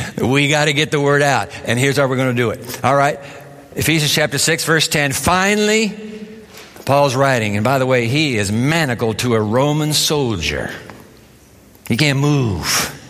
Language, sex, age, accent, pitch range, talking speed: English, male, 60-79, American, 140-190 Hz, 180 wpm